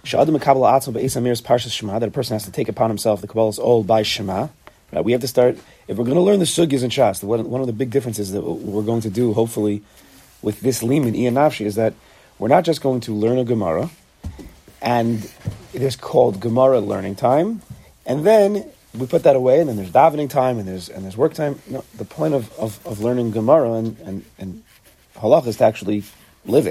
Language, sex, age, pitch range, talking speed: English, male, 30-49, 110-140 Hz, 220 wpm